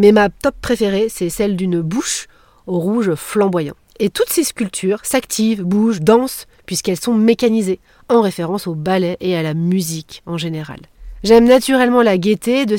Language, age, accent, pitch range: French, 40-59, French, 175-235 Hz